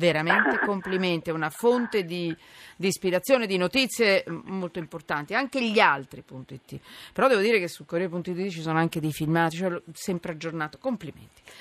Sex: female